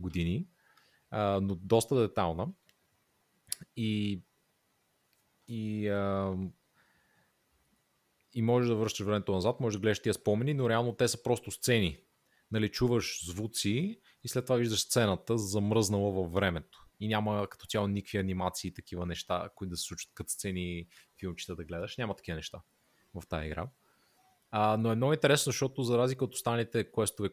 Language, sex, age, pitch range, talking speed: Bulgarian, male, 30-49, 95-120 Hz, 150 wpm